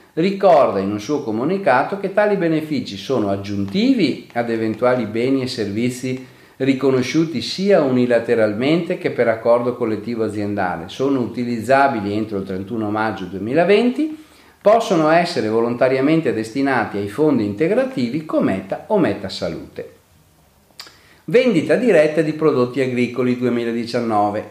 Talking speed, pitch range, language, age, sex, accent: 115 wpm, 110-165 Hz, Italian, 40-59, male, native